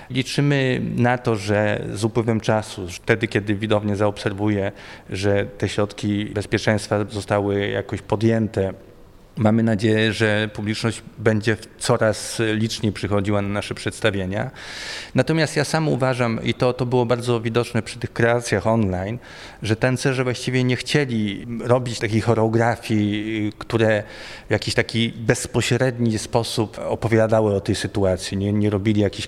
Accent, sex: native, male